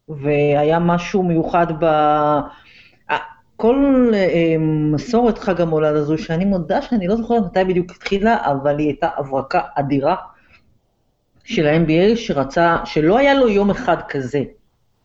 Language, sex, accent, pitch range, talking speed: Hebrew, female, native, 150-205 Hz, 120 wpm